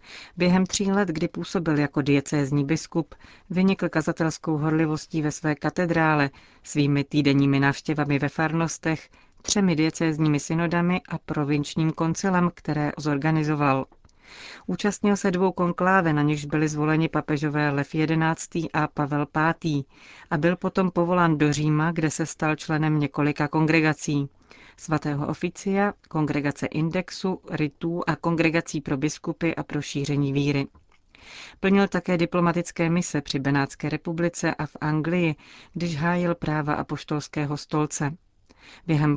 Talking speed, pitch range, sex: 125 wpm, 150-170 Hz, female